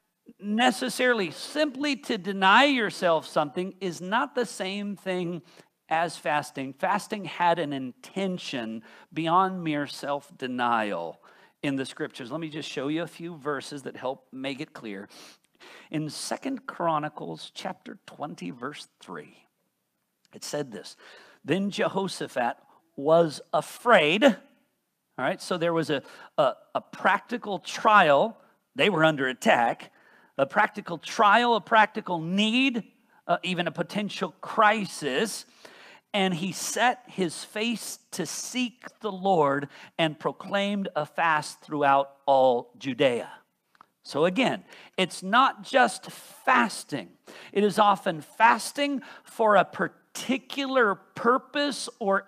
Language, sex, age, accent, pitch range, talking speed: English, male, 50-69, American, 155-230 Hz, 120 wpm